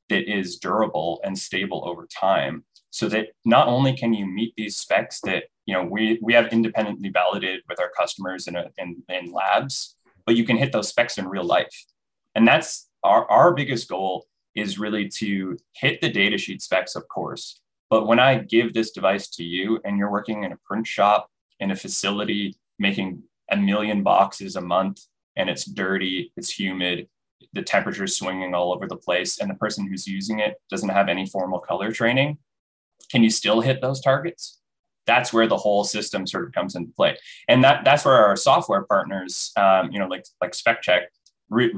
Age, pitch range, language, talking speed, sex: 20-39, 95-115 Hz, English, 195 wpm, male